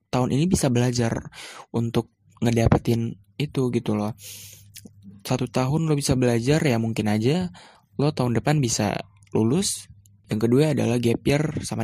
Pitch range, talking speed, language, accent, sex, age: 110-130 Hz, 140 wpm, Indonesian, native, male, 20-39